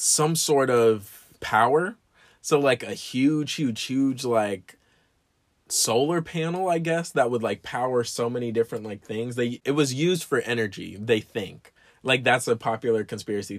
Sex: male